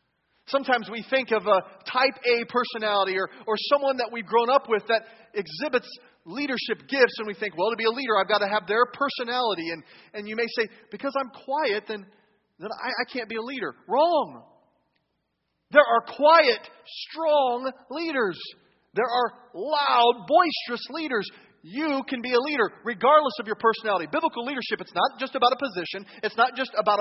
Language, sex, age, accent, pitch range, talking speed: English, male, 40-59, American, 215-275 Hz, 180 wpm